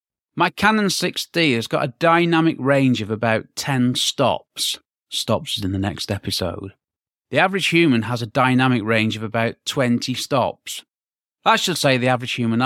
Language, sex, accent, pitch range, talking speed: English, male, British, 110-140 Hz, 165 wpm